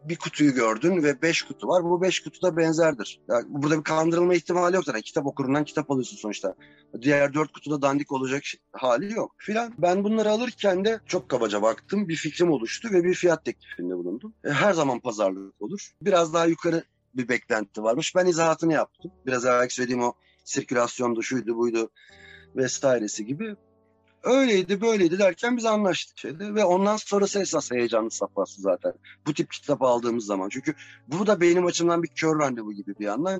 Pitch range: 120-175 Hz